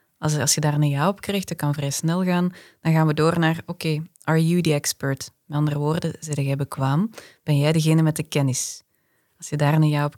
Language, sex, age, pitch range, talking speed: Dutch, female, 20-39, 150-175 Hz, 235 wpm